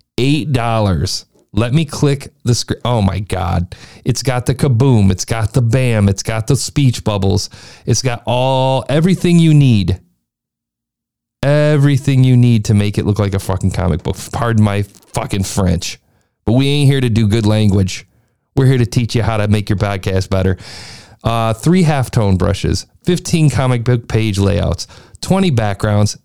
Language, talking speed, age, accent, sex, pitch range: English, 175 wpm, 40-59, American, male, 100-135 Hz